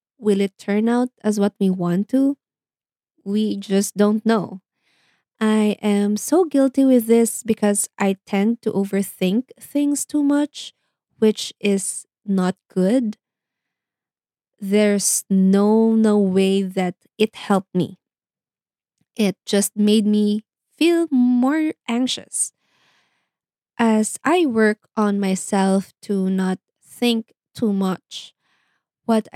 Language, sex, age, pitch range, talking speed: Filipino, female, 20-39, 195-245 Hz, 115 wpm